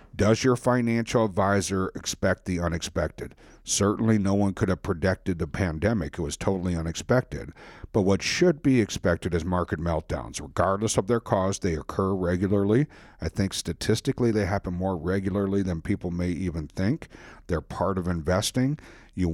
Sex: male